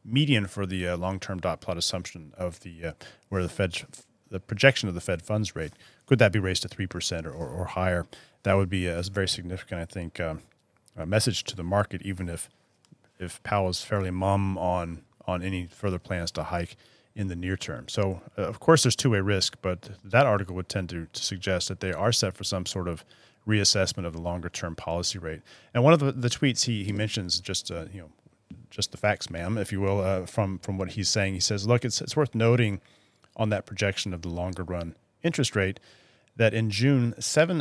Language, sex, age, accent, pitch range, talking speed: English, male, 30-49, American, 90-110 Hz, 215 wpm